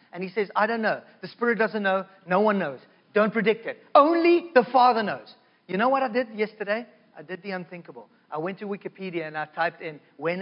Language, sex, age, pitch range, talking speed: English, male, 40-59, 190-245 Hz, 225 wpm